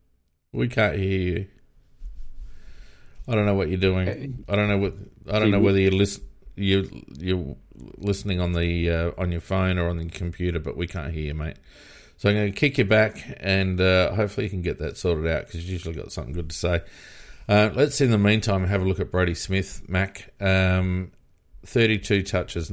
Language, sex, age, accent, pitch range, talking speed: English, male, 40-59, Australian, 85-100 Hz, 205 wpm